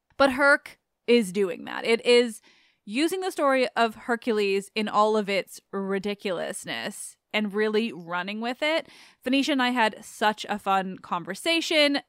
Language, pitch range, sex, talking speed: English, 195-255 Hz, female, 150 wpm